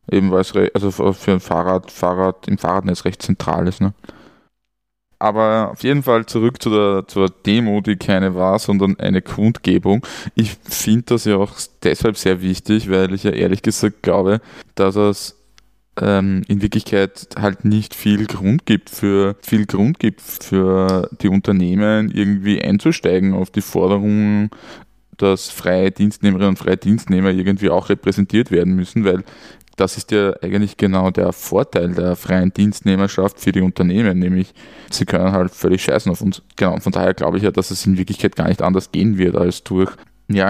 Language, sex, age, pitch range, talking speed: German, male, 20-39, 95-105 Hz, 175 wpm